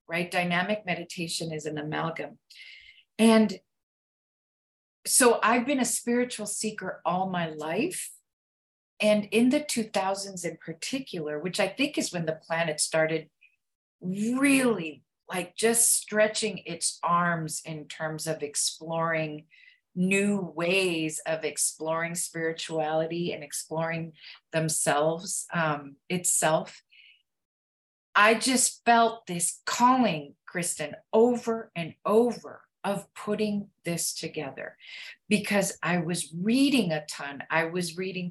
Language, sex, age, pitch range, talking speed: English, female, 40-59, 155-205 Hz, 115 wpm